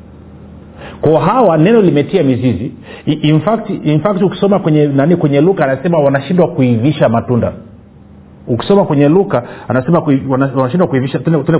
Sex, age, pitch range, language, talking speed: male, 40-59, 90-155 Hz, Swahili, 140 wpm